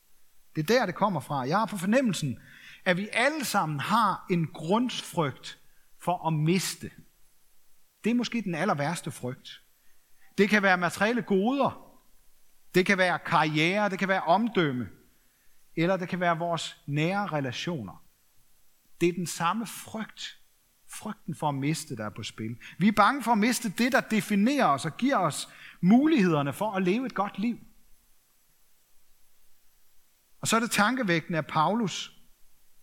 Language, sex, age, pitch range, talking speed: Danish, male, 40-59, 155-215 Hz, 160 wpm